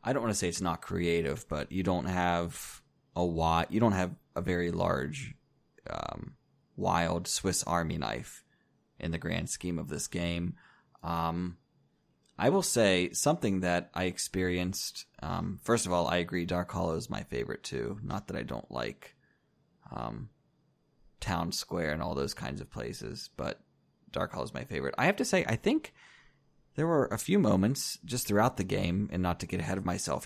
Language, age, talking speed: English, 20-39, 185 wpm